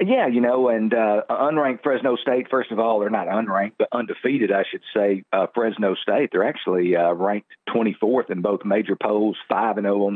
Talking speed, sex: 200 wpm, male